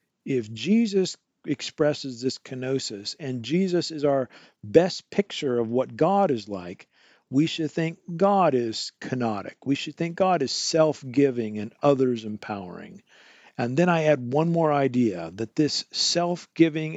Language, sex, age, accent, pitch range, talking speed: English, male, 50-69, American, 115-150 Hz, 140 wpm